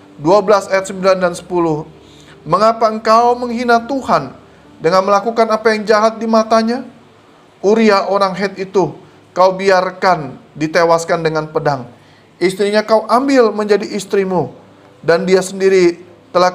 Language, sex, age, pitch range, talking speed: Indonesian, male, 30-49, 170-225 Hz, 125 wpm